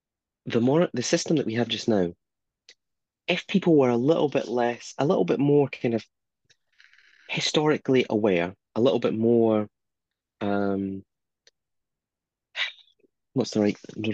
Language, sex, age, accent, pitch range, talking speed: English, male, 30-49, British, 100-130 Hz, 140 wpm